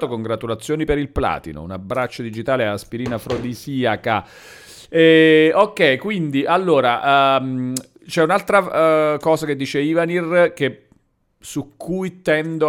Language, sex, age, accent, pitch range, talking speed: Italian, male, 40-59, native, 115-155 Hz, 115 wpm